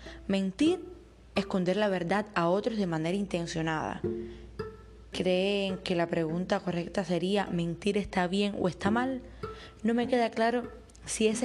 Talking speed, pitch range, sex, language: 140 wpm, 180-225 Hz, female, Spanish